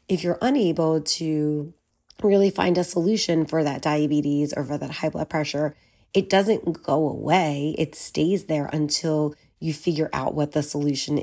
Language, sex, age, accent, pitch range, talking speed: English, female, 30-49, American, 150-175 Hz, 165 wpm